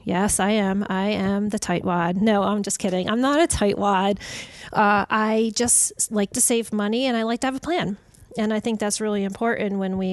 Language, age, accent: English, 30-49, American